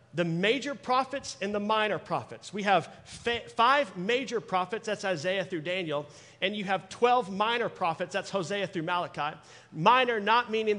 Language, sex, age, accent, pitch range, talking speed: English, male, 40-59, American, 150-205 Hz, 160 wpm